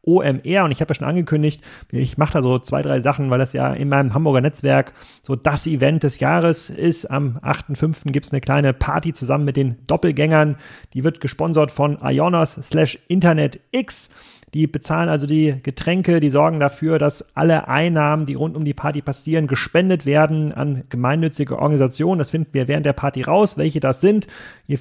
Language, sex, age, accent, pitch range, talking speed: German, male, 30-49, German, 130-160 Hz, 190 wpm